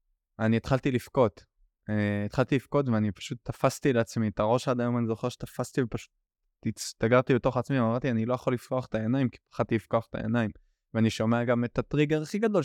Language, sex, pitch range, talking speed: Hebrew, male, 110-130 Hz, 190 wpm